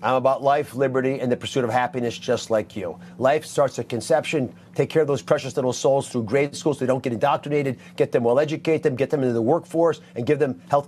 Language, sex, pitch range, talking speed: English, male, 130-170 Hz, 235 wpm